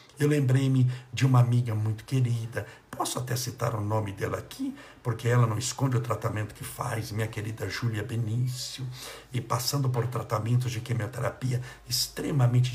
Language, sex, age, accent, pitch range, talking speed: Portuguese, male, 60-79, Brazilian, 120-135 Hz, 155 wpm